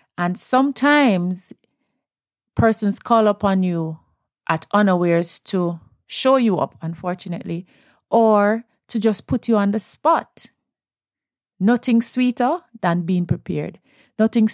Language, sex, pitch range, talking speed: English, female, 170-215 Hz, 110 wpm